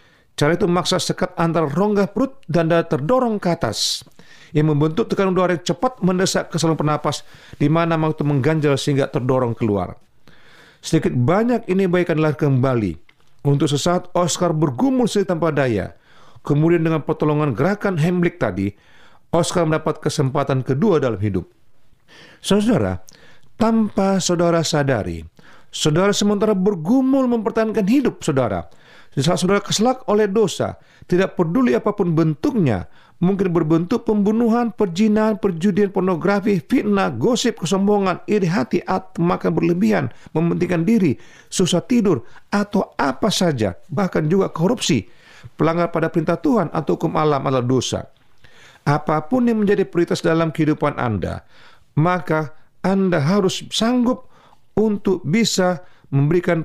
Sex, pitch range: male, 150-200 Hz